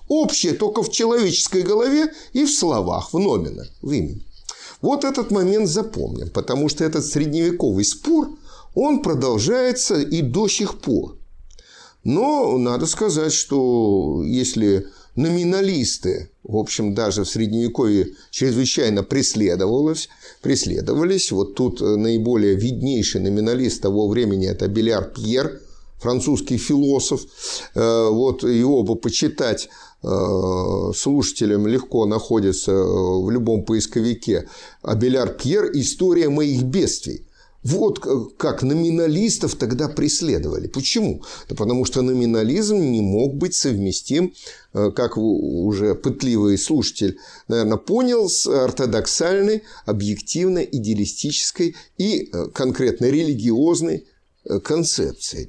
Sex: male